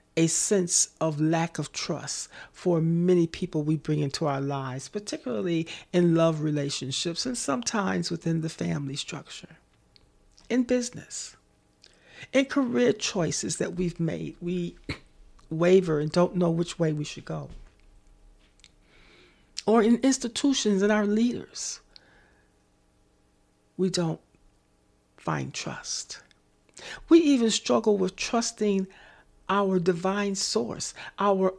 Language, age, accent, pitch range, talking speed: English, 40-59, American, 170-230 Hz, 115 wpm